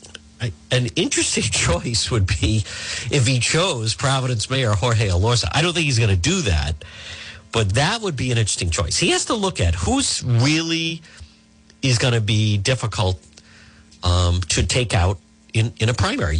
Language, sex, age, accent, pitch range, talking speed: English, male, 50-69, American, 95-130 Hz, 170 wpm